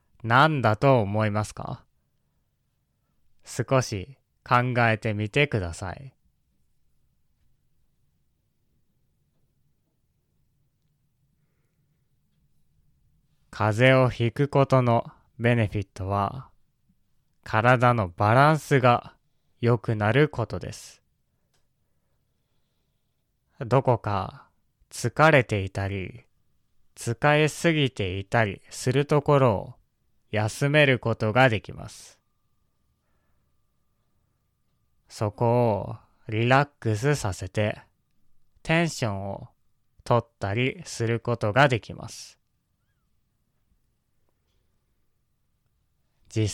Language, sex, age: Japanese, male, 20-39